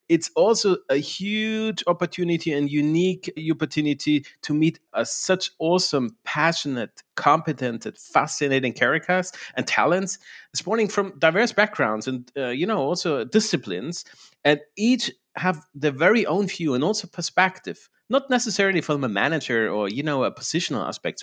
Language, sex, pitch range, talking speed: English, male, 135-185 Hz, 140 wpm